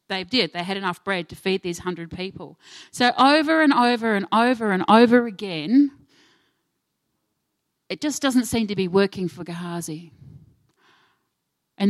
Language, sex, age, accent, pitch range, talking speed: English, female, 40-59, Australian, 175-255 Hz, 150 wpm